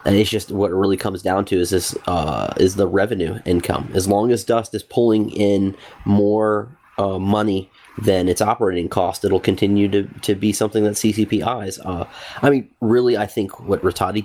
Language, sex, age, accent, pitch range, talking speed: English, male, 30-49, American, 95-110 Hz, 200 wpm